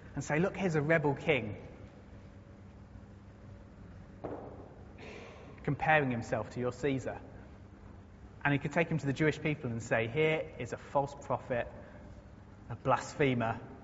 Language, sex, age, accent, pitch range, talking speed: English, male, 30-49, British, 100-155 Hz, 130 wpm